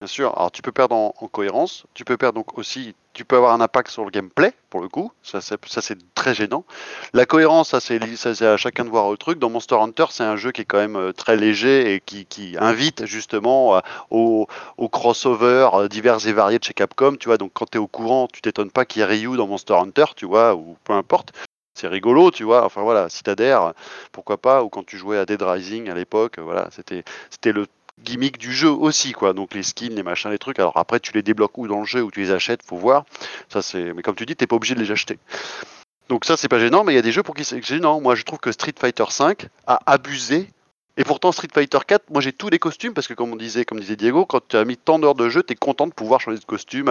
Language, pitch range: French, 105-145 Hz